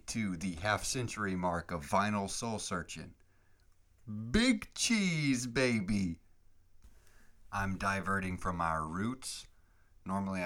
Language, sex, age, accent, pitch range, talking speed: English, male, 40-59, American, 80-95 Hz, 90 wpm